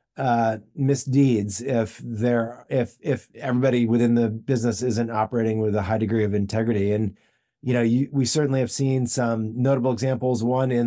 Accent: American